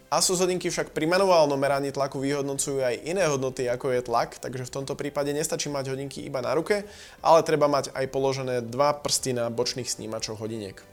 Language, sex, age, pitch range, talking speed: Slovak, male, 20-39, 130-155 Hz, 190 wpm